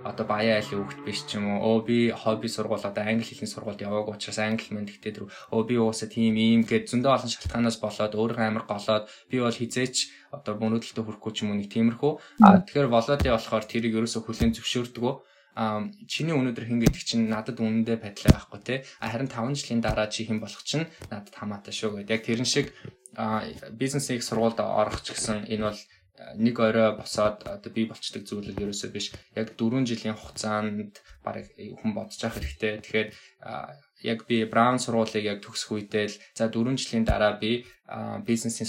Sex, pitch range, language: male, 105-115 Hz, English